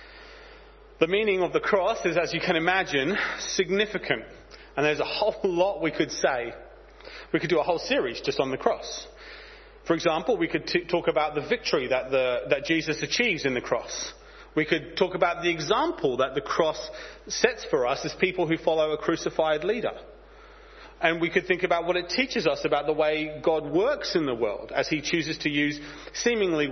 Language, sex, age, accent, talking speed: English, male, 30-49, British, 195 wpm